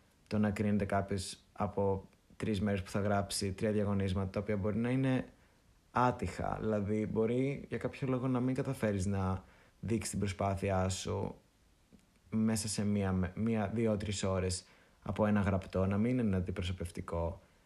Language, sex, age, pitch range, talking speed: Greek, male, 20-39, 95-120 Hz, 155 wpm